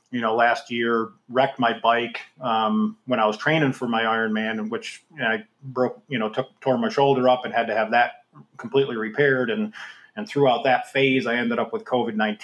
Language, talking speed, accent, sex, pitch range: English, 210 wpm, American, male, 110-130 Hz